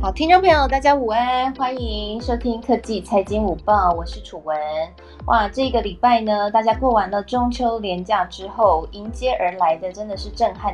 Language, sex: Chinese, female